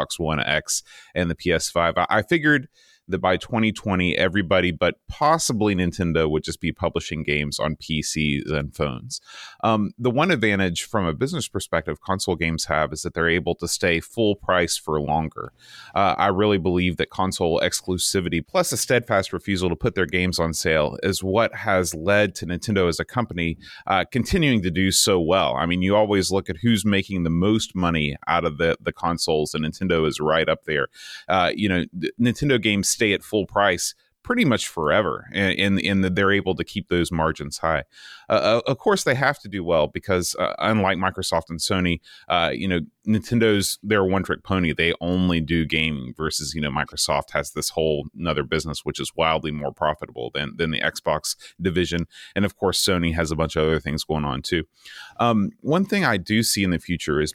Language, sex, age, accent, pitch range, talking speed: English, male, 30-49, American, 80-100 Hz, 200 wpm